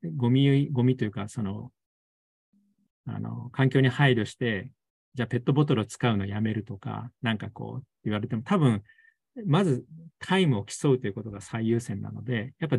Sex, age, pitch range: male, 40-59, 110-150 Hz